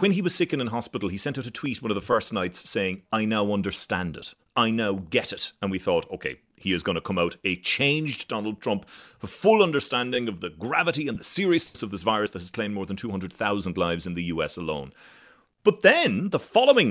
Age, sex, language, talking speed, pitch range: 30-49, male, English, 240 wpm, 95-140 Hz